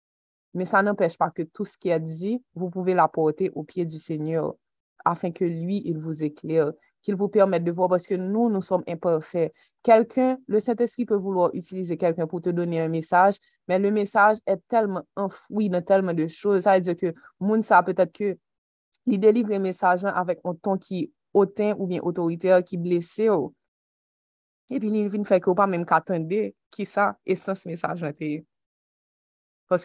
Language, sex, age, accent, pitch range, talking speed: French, female, 20-39, Canadian, 165-200 Hz, 195 wpm